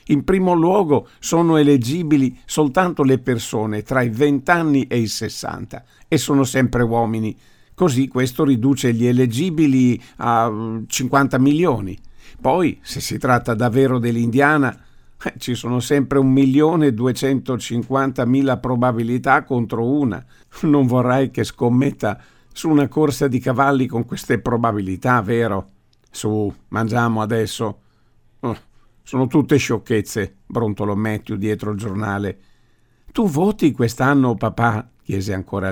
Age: 50-69